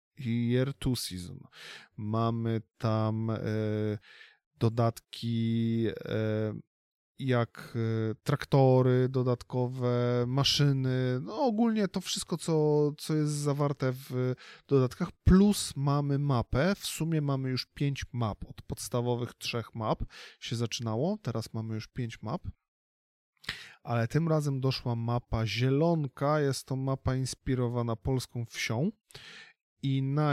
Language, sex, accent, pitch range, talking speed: Polish, male, native, 110-140 Hz, 110 wpm